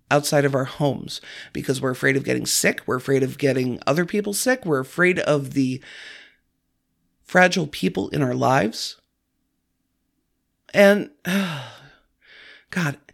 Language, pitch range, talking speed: English, 140-200 Hz, 130 wpm